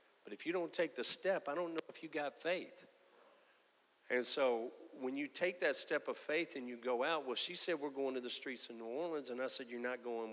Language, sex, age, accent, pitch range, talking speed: English, male, 40-59, American, 110-180 Hz, 255 wpm